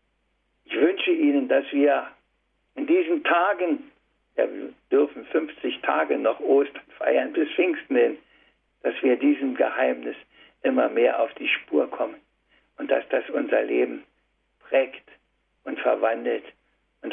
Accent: German